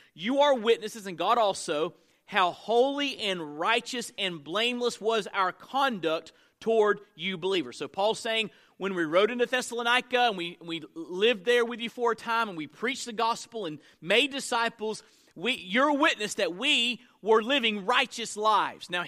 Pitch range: 190-240 Hz